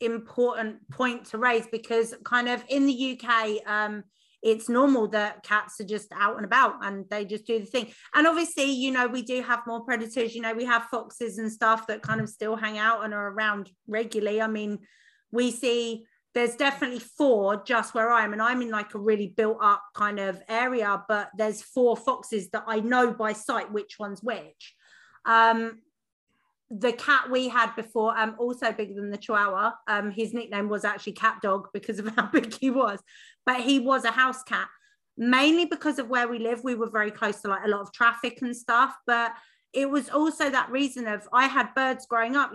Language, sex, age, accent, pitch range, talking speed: English, female, 30-49, British, 215-245 Hz, 205 wpm